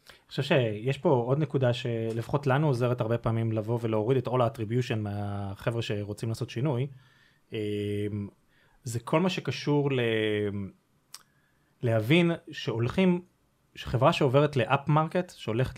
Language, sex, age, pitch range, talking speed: Hebrew, male, 30-49, 115-150 Hz, 120 wpm